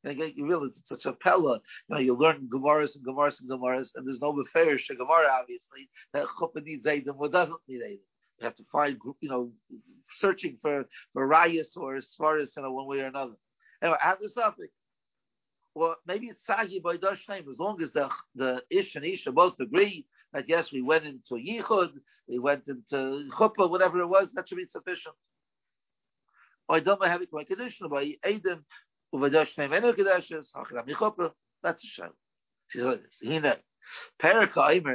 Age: 50-69